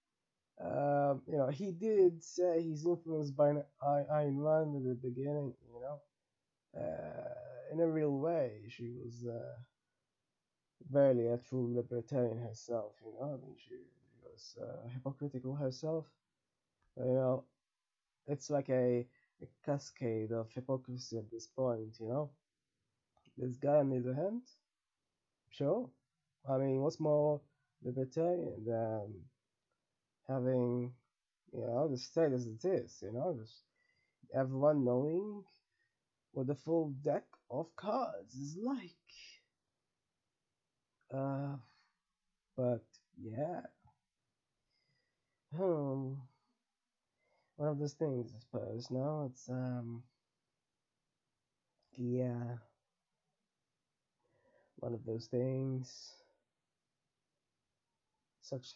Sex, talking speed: male, 110 wpm